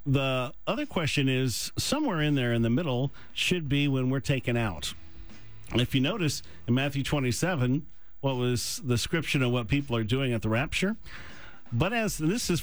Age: 50-69